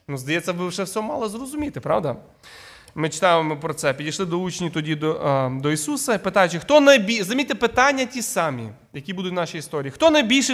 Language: Ukrainian